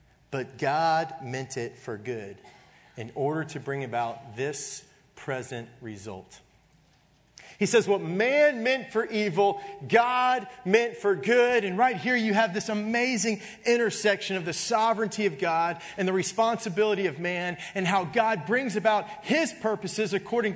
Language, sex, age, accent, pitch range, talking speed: English, male, 40-59, American, 175-225 Hz, 150 wpm